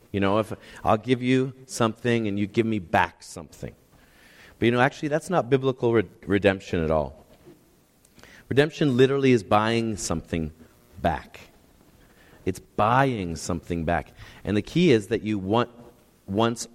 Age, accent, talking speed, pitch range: 30-49, American, 150 wpm, 100-130 Hz